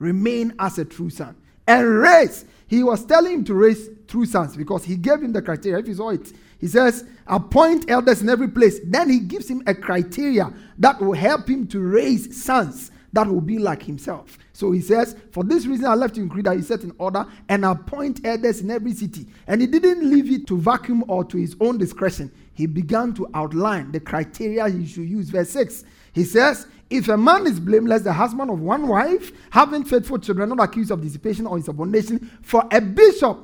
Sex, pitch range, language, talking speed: male, 185-245 Hz, English, 210 wpm